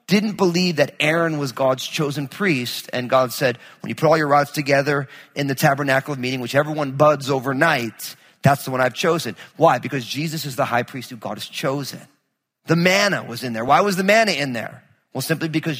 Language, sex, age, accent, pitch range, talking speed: English, male, 40-59, American, 135-180 Hz, 215 wpm